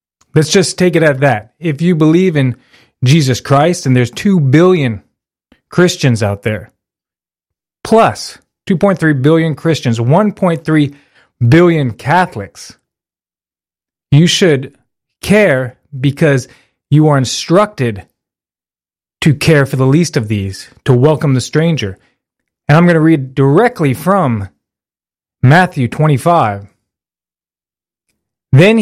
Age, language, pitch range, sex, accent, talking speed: 30-49, English, 130-170 Hz, male, American, 110 wpm